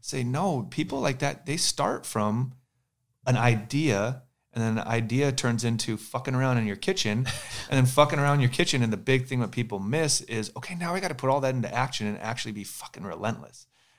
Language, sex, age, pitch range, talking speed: English, male, 30-49, 110-135 Hz, 215 wpm